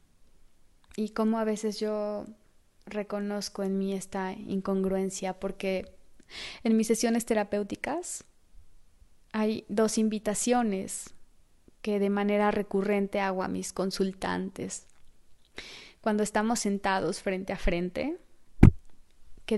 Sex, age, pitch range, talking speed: female, 20-39, 190-230 Hz, 100 wpm